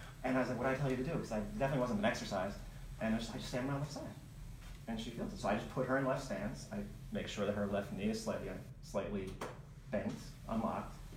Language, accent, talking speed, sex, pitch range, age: English, American, 270 wpm, male, 105-135 Hz, 30-49